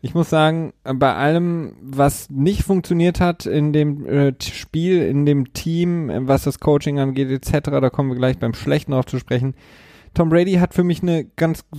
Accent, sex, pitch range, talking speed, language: German, male, 115-145 Hz, 185 wpm, German